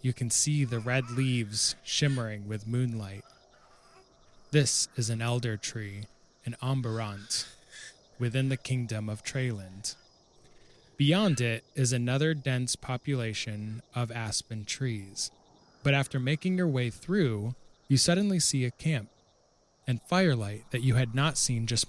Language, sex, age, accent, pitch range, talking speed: English, male, 20-39, American, 110-135 Hz, 135 wpm